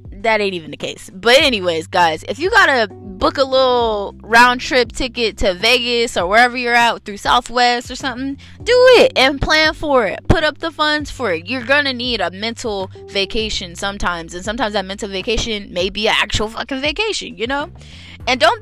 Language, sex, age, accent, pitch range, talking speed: English, female, 10-29, American, 205-290 Hz, 195 wpm